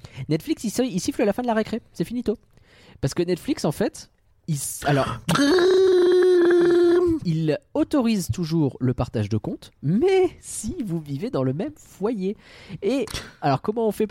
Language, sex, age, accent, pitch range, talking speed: French, male, 20-39, French, 130-220 Hz, 165 wpm